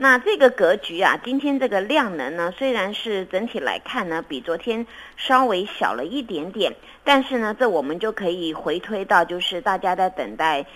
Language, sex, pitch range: Chinese, female, 185-260 Hz